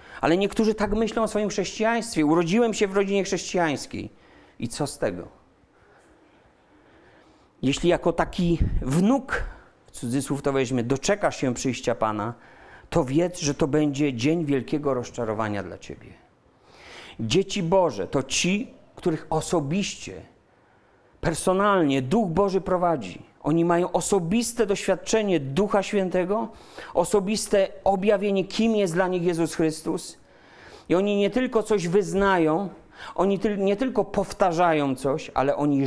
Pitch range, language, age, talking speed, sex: 140-200 Hz, Polish, 40-59, 125 wpm, male